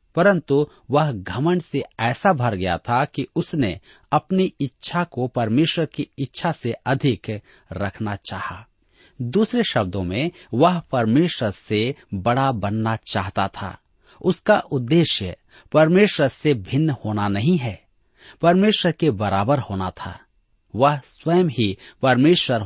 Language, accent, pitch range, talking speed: Hindi, native, 100-150 Hz, 125 wpm